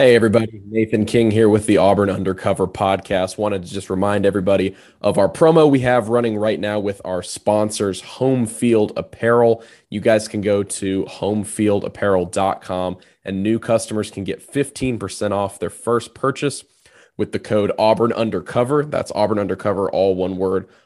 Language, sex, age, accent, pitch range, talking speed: English, male, 20-39, American, 95-115 Hz, 160 wpm